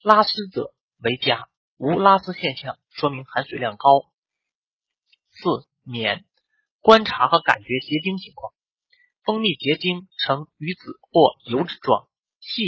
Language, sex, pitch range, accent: Chinese, male, 135-205 Hz, native